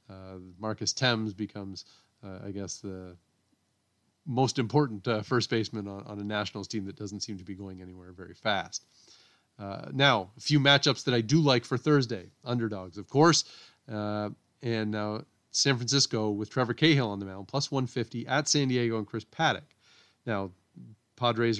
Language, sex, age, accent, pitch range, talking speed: English, male, 30-49, American, 105-135 Hz, 170 wpm